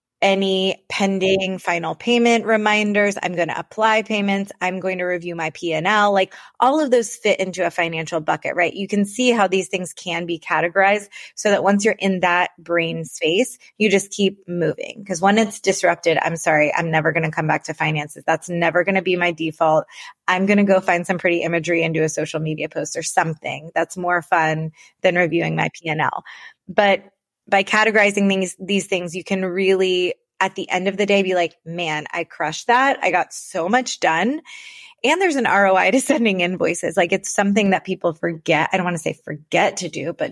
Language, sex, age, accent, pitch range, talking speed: English, female, 20-39, American, 170-200 Hz, 205 wpm